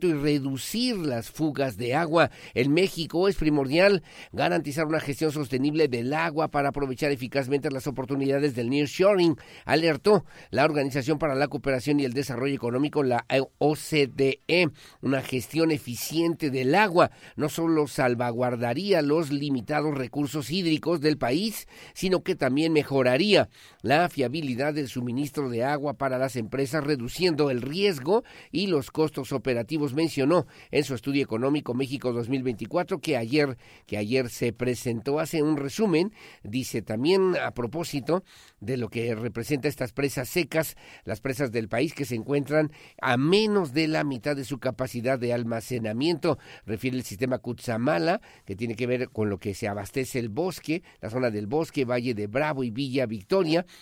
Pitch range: 125-155 Hz